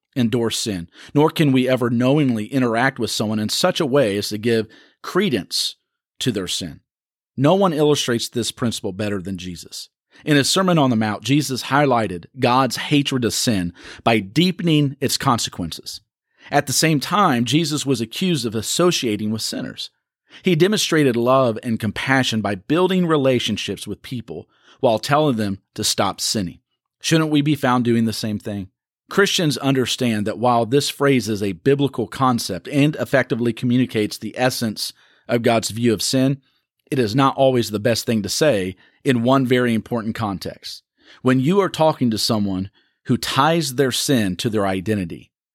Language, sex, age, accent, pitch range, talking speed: English, male, 40-59, American, 110-145 Hz, 165 wpm